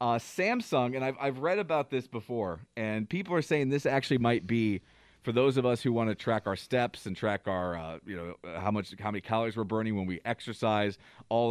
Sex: male